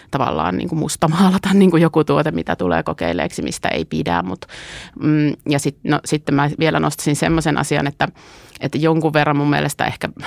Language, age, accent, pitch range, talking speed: Finnish, 30-49, native, 140-155 Hz, 150 wpm